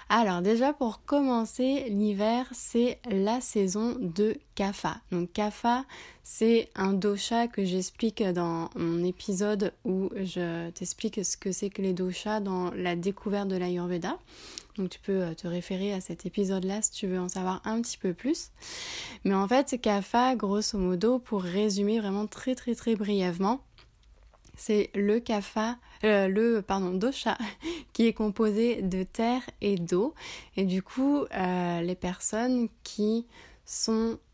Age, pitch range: 20-39, 185-225 Hz